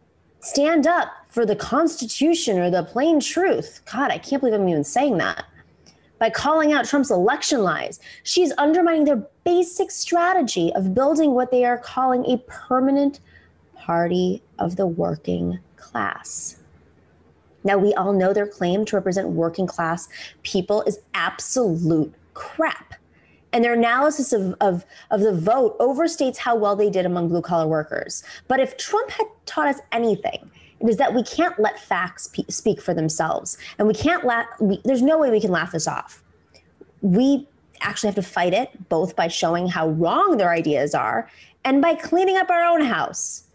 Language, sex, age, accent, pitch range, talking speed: English, female, 20-39, American, 180-290 Hz, 170 wpm